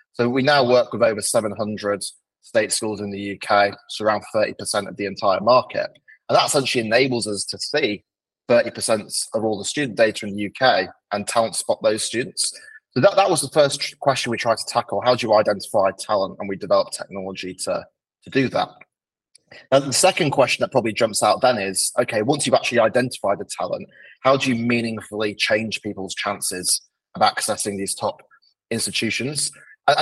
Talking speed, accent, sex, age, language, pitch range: 190 wpm, British, male, 20-39, English, 105-130 Hz